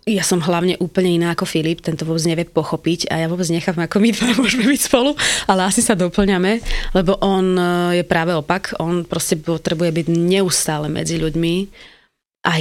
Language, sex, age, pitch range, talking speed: Slovak, female, 20-39, 170-195 Hz, 180 wpm